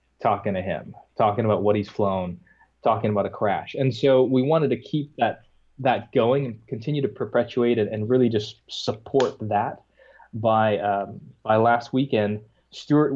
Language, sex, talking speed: English, male, 175 wpm